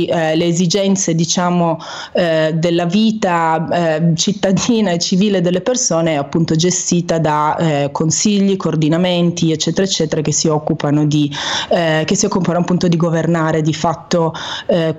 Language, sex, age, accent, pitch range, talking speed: Italian, female, 20-39, native, 165-195 Hz, 140 wpm